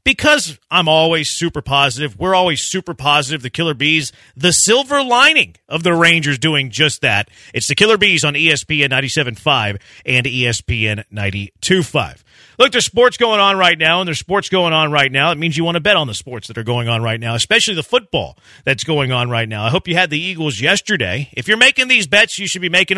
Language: English